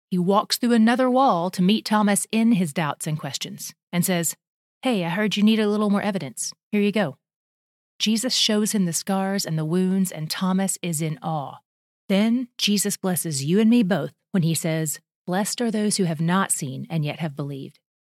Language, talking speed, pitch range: English, 200 wpm, 165-210 Hz